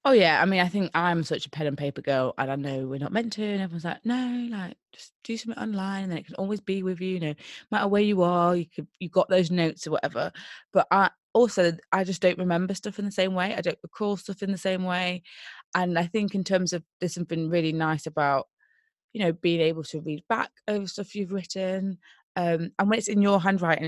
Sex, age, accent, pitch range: female, 20-39, British, 160-195 Hz